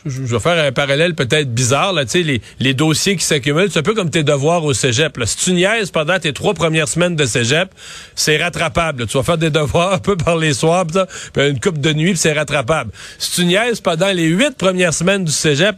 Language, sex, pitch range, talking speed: French, male, 140-185 Hz, 245 wpm